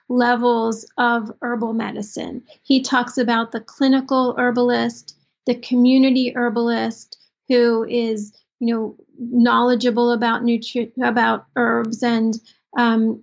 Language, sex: English, female